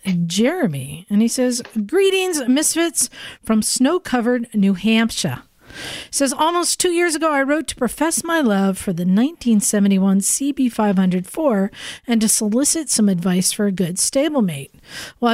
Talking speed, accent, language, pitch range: 135 wpm, American, English, 200-265 Hz